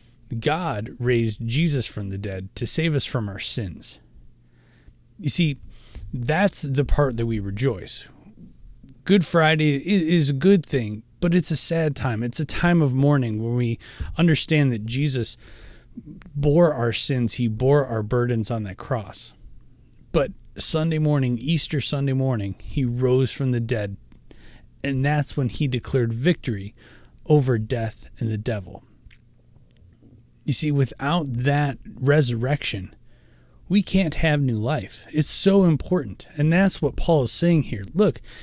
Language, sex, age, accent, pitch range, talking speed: English, male, 30-49, American, 115-155 Hz, 145 wpm